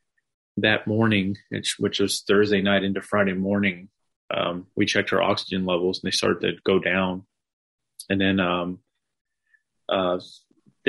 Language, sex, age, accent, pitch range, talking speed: English, male, 30-49, American, 95-105 Hz, 150 wpm